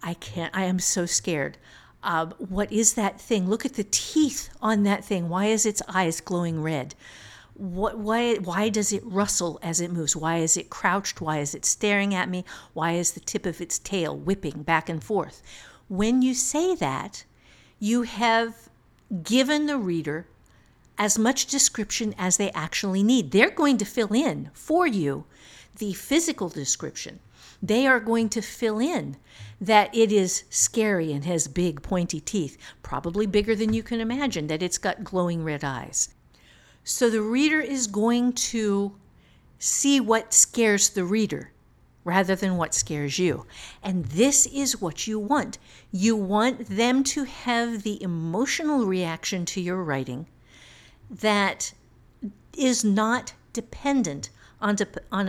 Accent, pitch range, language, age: American, 175-230 Hz, English, 50-69